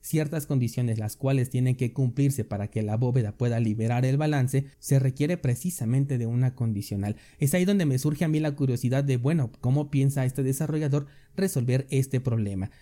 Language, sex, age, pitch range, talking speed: Spanish, male, 30-49, 120-140 Hz, 185 wpm